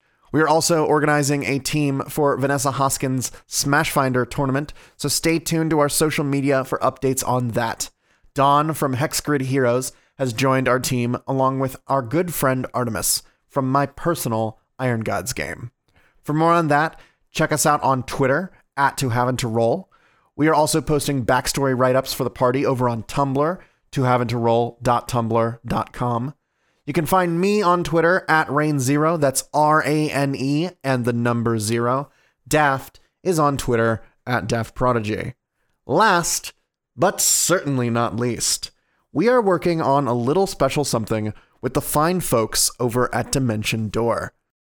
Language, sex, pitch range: English, male, 125-155 Hz